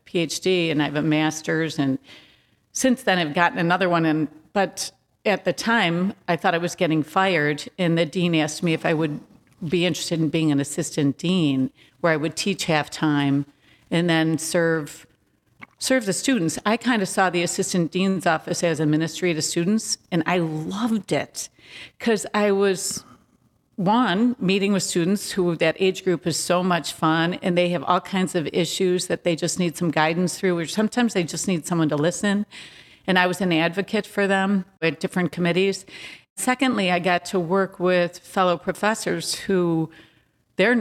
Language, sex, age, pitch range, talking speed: English, female, 50-69, 160-190 Hz, 180 wpm